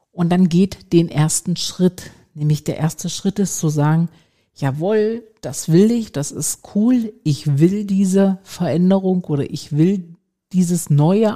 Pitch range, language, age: 150-195 Hz, German, 50-69